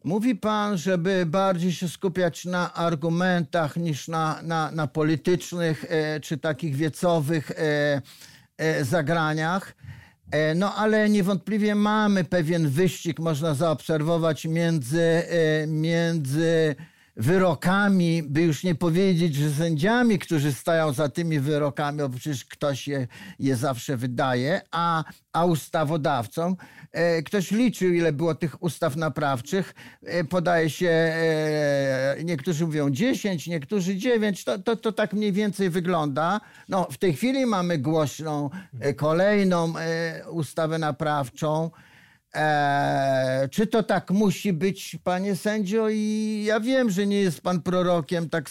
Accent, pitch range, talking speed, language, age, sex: native, 155-195 Hz, 115 wpm, Polish, 50-69, male